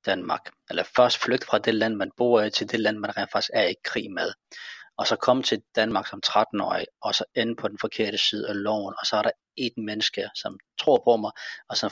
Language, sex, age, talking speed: Danish, male, 40-59, 235 wpm